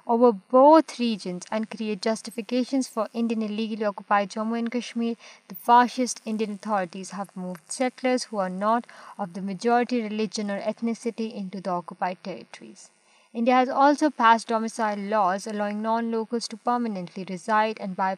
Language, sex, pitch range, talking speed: Urdu, female, 195-235 Hz, 150 wpm